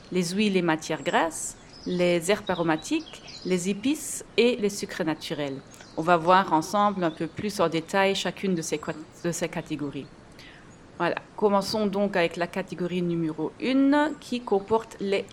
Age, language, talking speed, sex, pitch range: 30-49, French, 155 wpm, female, 170-215 Hz